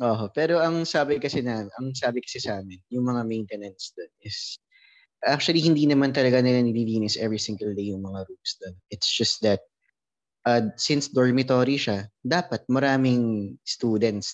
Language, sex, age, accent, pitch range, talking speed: English, male, 20-39, Filipino, 110-135 Hz, 160 wpm